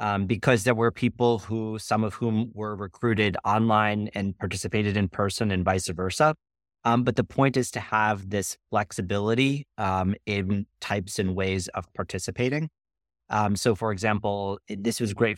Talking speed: 165 wpm